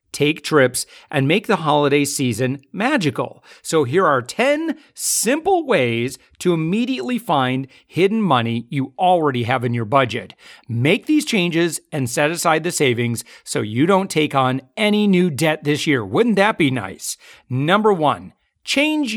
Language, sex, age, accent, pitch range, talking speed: English, male, 40-59, American, 145-205 Hz, 155 wpm